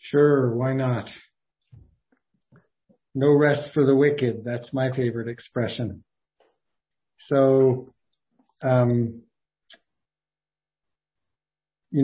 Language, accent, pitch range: English, American, 120-135 Hz